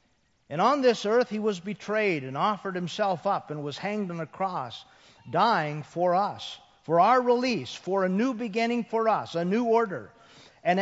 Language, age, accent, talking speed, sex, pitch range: English, 50-69, American, 185 wpm, male, 175-240 Hz